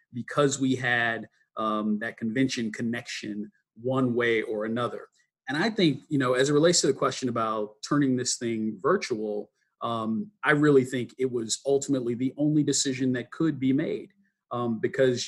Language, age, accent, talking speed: English, 40-59, American, 170 wpm